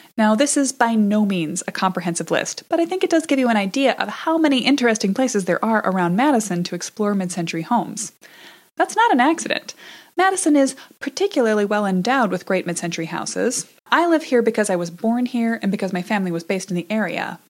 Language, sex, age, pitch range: English, female, 30-49, 180-250 Hz